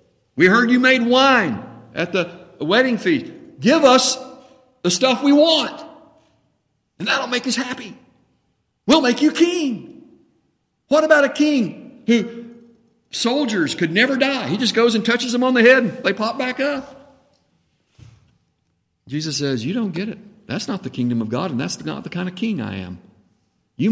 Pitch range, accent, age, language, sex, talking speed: 165-260 Hz, American, 60-79, English, male, 175 wpm